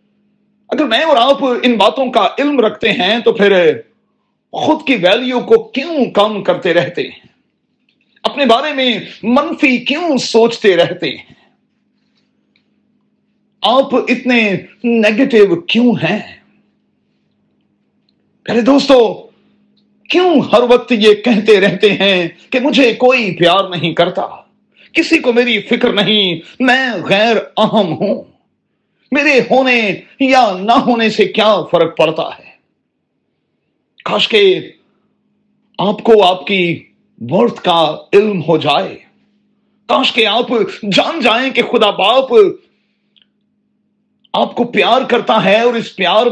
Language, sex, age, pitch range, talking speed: Urdu, male, 40-59, 200-245 Hz, 120 wpm